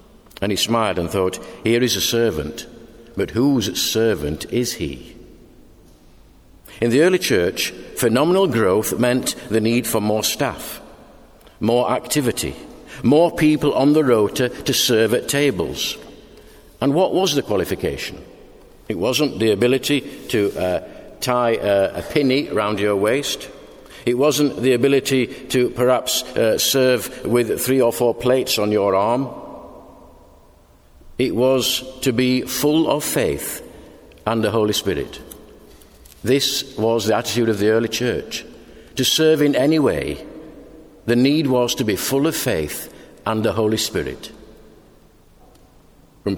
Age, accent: 60-79, British